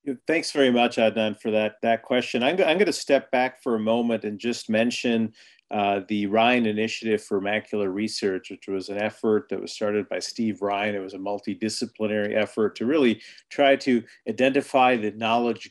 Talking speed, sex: 185 wpm, male